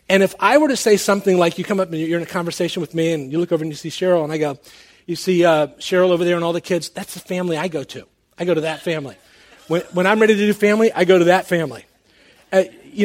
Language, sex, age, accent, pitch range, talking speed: English, male, 40-59, American, 165-205 Hz, 295 wpm